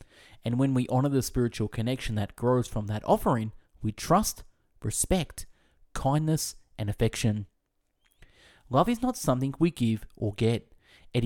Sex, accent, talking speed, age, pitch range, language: male, Australian, 145 wpm, 30-49, 110-135 Hz, English